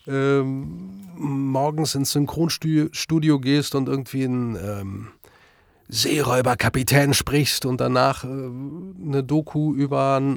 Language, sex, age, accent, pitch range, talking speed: German, male, 30-49, German, 115-145 Hz, 105 wpm